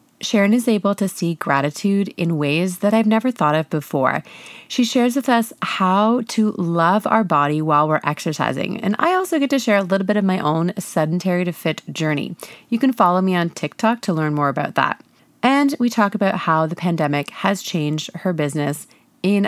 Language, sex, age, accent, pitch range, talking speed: English, female, 30-49, American, 170-240 Hz, 200 wpm